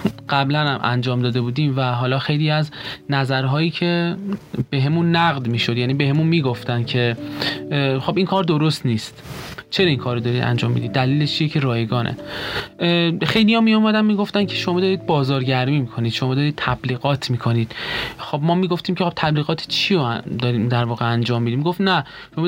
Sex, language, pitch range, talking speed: male, Persian, 125-170 Hz, 195 wpm